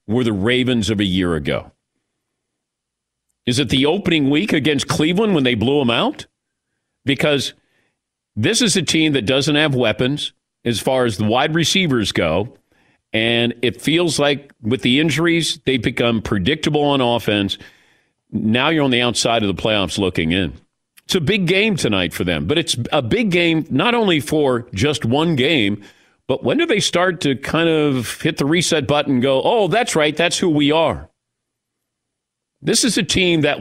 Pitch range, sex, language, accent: 120-160 Hz, male, English, American